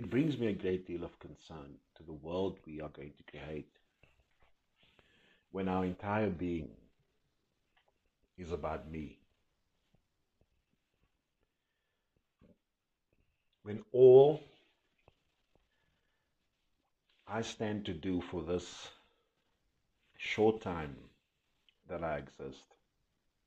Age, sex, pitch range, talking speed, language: 50-69, male, 80-105 Hz, 90 wpm, English